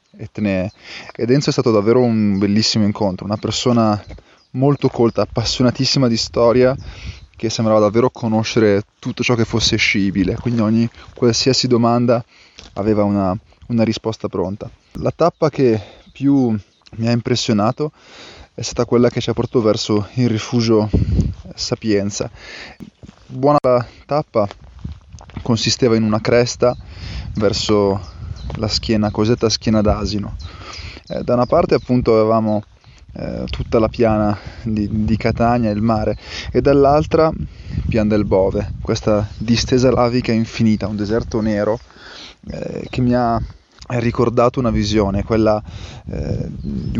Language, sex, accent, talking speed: Italian, male, native, 130 wpm